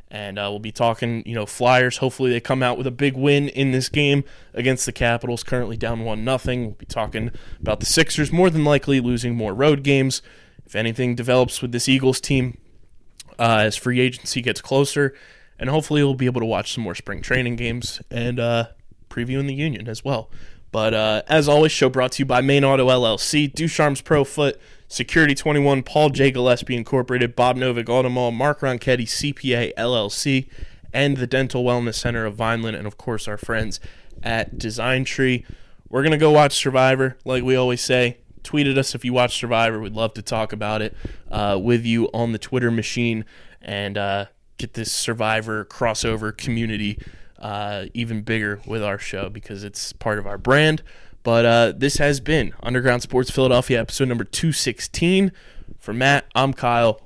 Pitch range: 110-130 Hz